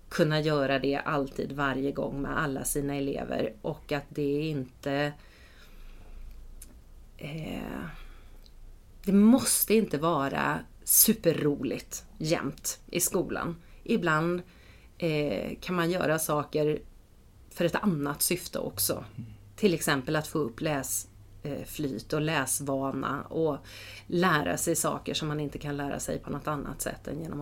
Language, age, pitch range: English, 30-49, 140-185 Hz